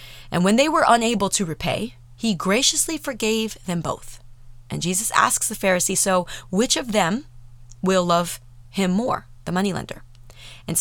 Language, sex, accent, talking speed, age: English, female, American, 155 wpm, 30-49